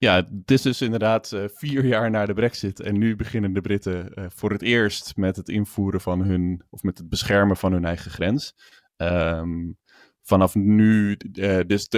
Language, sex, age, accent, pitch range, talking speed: Dutch, male, 20-39, Dutch, 95-105 Hz, 185 wpm